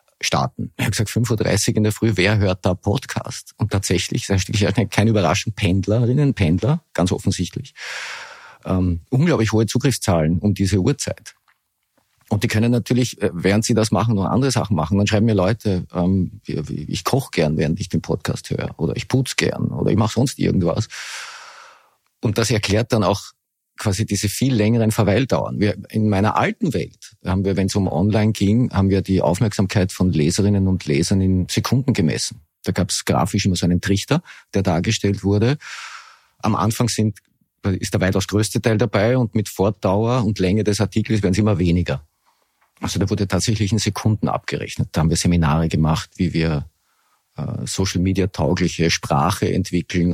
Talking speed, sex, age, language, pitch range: 175 wpm, male, 50-69, German, 90-110 Hz